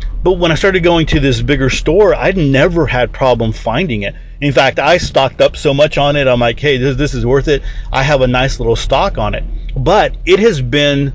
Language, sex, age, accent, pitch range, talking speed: English, male, 40-59, American, 120-145 Hz, 235 wpm